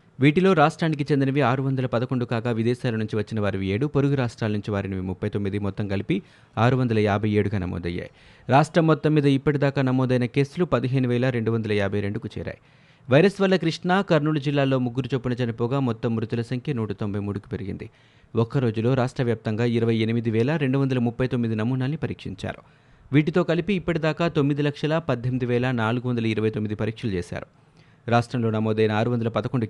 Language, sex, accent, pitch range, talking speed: Telugu, male, native, 115-145 Hz, 120 wpm